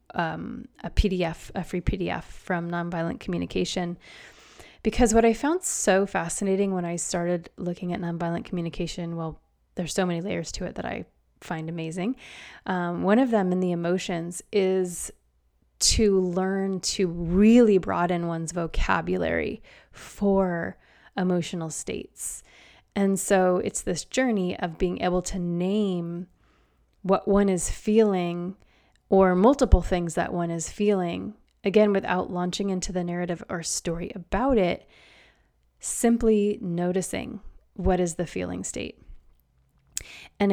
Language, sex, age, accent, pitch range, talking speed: English, female, 20-39, American, 170-200 Hz, 135 wpm